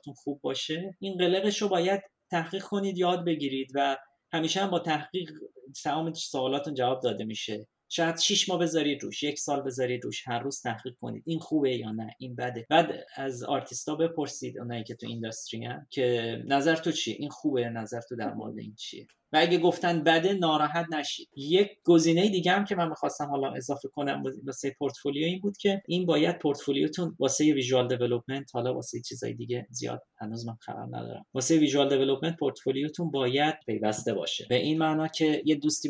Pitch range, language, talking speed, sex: 125-160 Hz, English, 180 wpm, male